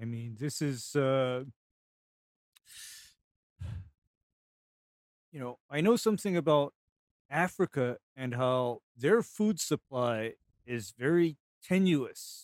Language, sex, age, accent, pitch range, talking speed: English, male, 40-59, American, 125-170 Hz, 95 wpm